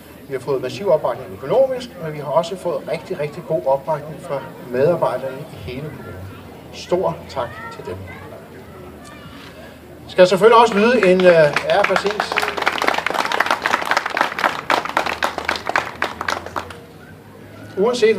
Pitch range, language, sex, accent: 150-190 Hz, Danish, male, native